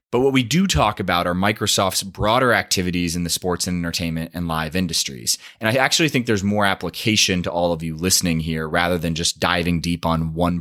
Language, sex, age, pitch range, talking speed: English, male, 20-39, 85-110 Hz, 215 wpm